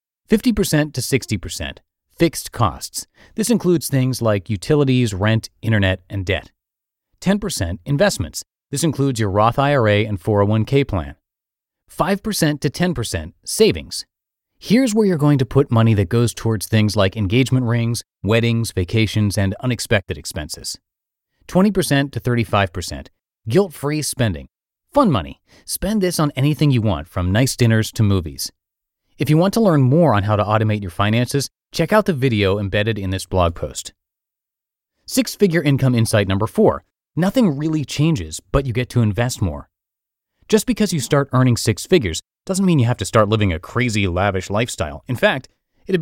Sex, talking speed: male, 155 wpm